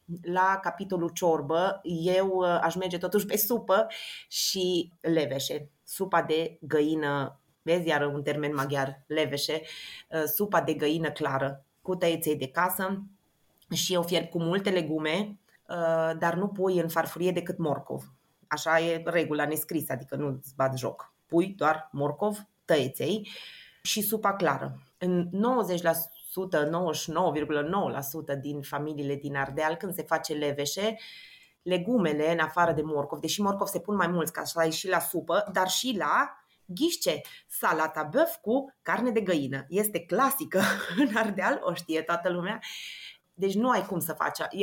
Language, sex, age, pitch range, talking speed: Romanian, female, 30-49, 150-190 Hz, 150 wpm